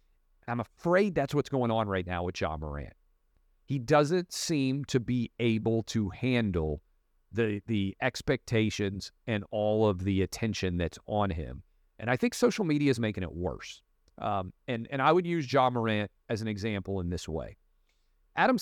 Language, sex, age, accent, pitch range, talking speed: English, male, 40-59, American, 90-130 Hz, 175 wpm